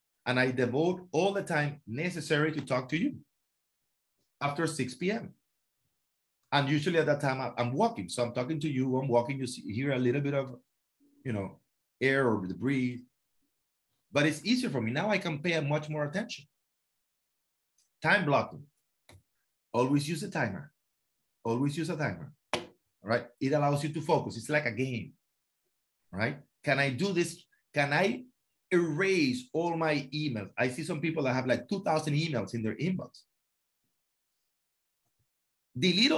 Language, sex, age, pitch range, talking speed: English, male, 30-49, 125-165 Hz, 165 wpm